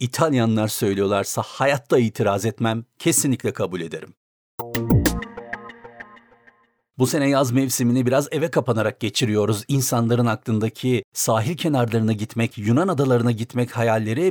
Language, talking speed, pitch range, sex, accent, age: Turkish, 105 wpm, 115-145 Hz, male, native, 50-69